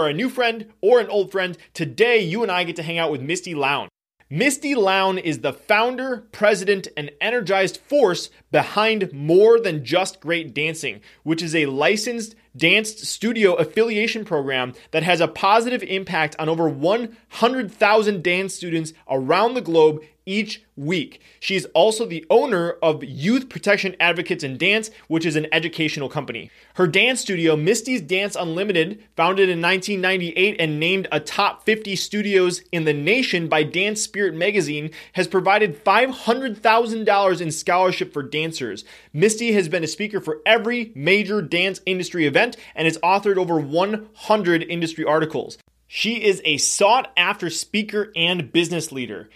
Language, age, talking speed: English, 30-49, 155 wpm